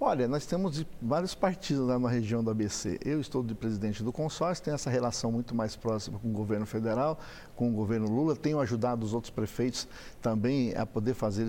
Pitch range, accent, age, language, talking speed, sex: 120-165 Hz, Brazilian, 60-79, English, 205 wpm, male